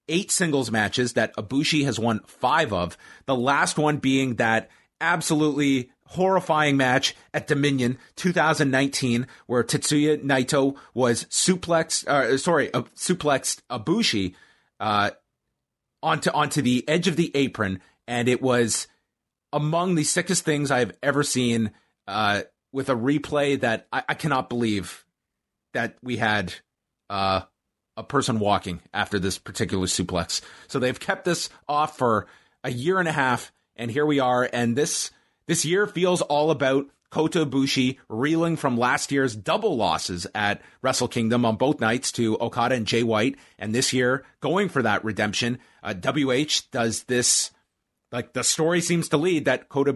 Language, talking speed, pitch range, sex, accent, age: English, 155 wpm, 115-150 Hz, male, American, 30-49